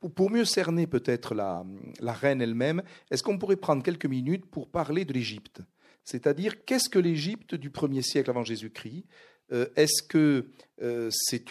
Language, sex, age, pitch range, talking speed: French, male, 50-69, 120-175 Hz, 160 wpm